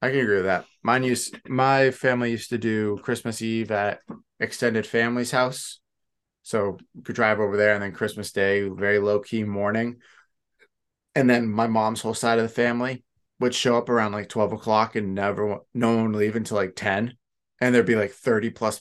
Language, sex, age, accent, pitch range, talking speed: English, male, 20-39, American, 95-120 Hz, 195 wpm